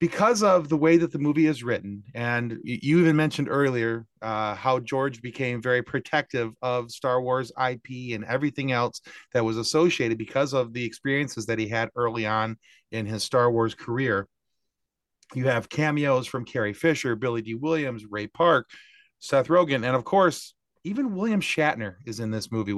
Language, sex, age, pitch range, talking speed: English, male, 40-59, 110-145 Hz, 175 wpm